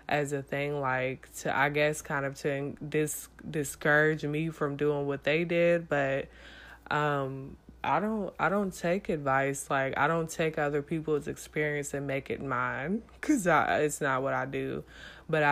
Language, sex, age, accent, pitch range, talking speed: English, female, 20-39, American, 140-155 Hz, 160 wpm